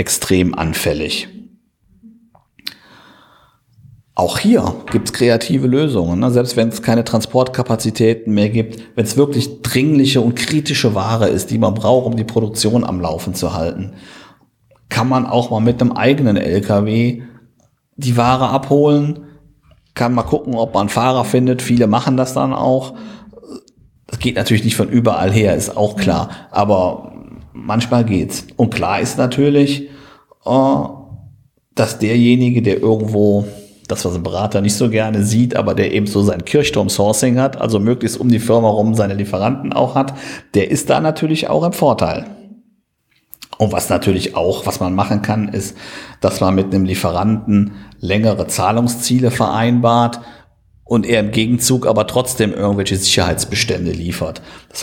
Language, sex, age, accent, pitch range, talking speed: German, male, 50-69, German, 105-125 Hz, 150 wpm